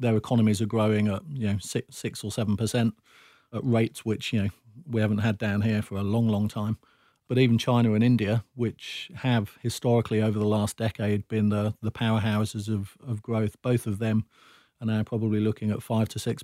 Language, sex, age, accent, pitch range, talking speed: English, male, 40-59, British, 110-120 Hz, 210 wpm